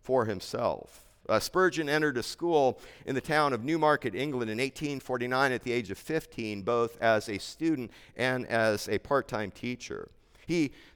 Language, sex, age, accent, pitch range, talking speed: English, male, 50-69, American, 120-155 Hz, 165 wpm